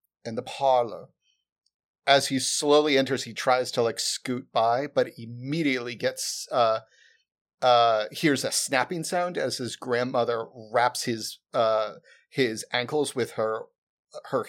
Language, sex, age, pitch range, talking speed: English, male, 40-59, 115-130 Hz, 135 wpm